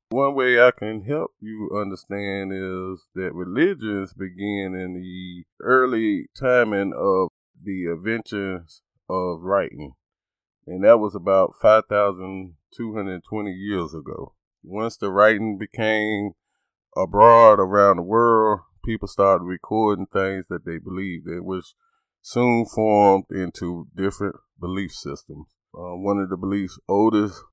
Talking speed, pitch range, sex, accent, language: 120 wpm, 95-110 Hz, male, American, English